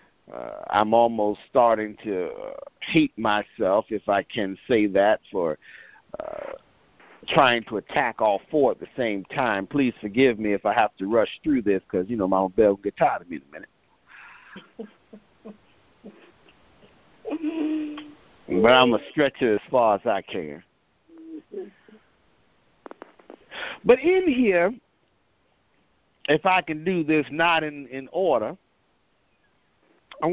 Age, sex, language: 50-69, male, English